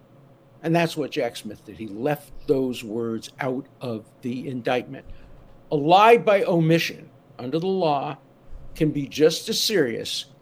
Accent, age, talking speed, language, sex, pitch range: American, 50-69, 150 wpm, English, male, 140-190 Hz